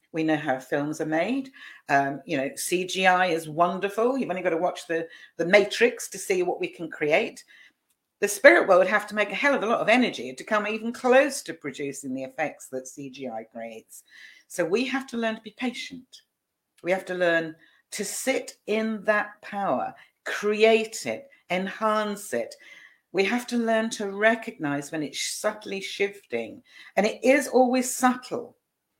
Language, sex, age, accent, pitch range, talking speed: English, female, 50-69, British, 160-225 Hz, 180 wpm